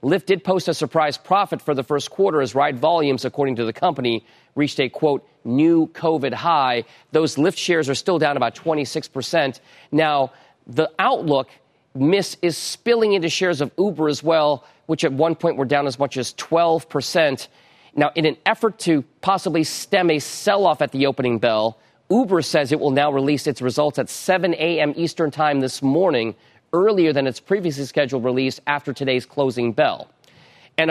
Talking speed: 185 wpm